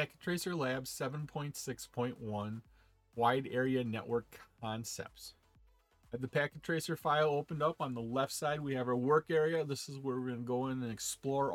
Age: 40-59